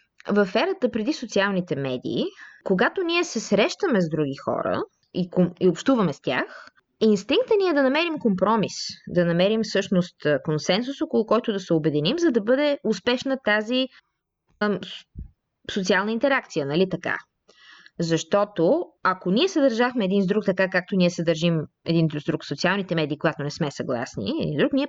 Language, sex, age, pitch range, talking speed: Bulgarian, female, 20-39, 165-260 Hz, 155 wpm